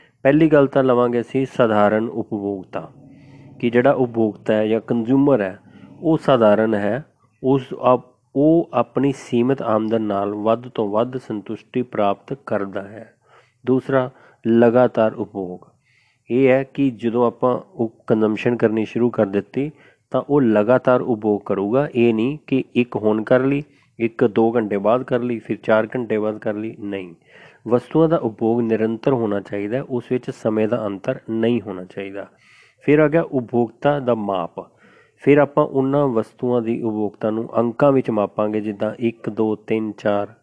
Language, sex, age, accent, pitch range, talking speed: Hindi, male, 30-49, native, 110-130 Hz, 140 wpm